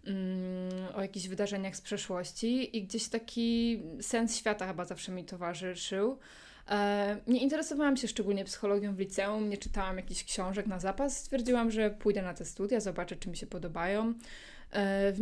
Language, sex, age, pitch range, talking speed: Polish, female, 20-39, 190-235 Hz, 155 wpm